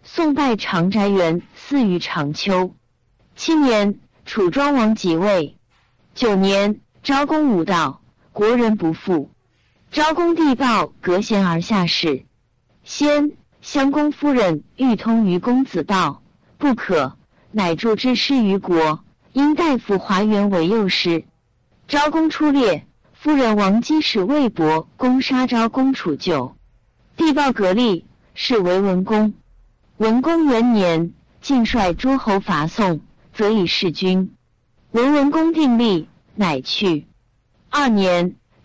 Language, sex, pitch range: Chinese, female, 180-270 Hz